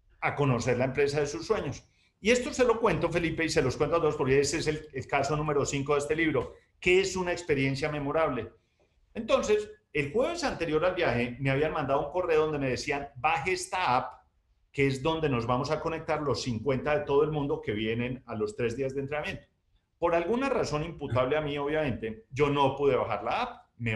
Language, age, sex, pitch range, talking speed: Spanish, 40-59, male, 135-180 Hz, 220 wpm